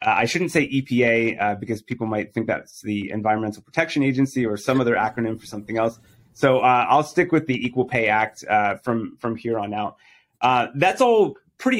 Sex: male